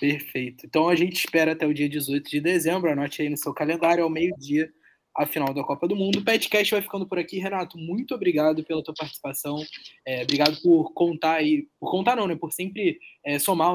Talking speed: 215 wpm